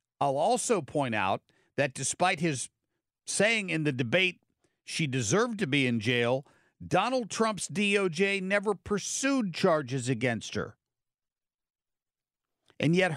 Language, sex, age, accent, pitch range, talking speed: English, male, 50-69, American, 140-185 Hz, 125 wpm